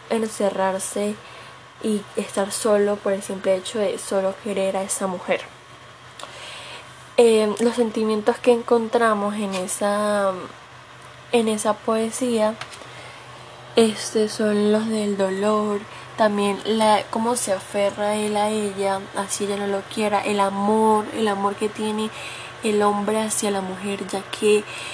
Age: 10-29